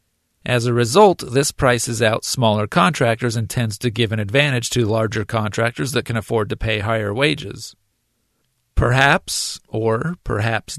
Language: English